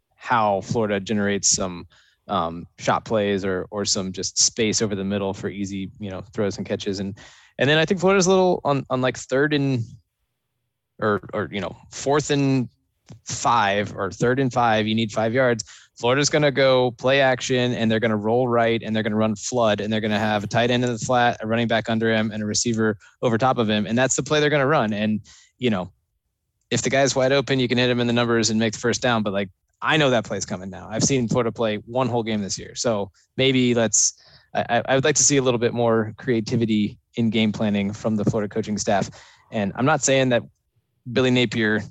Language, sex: English, male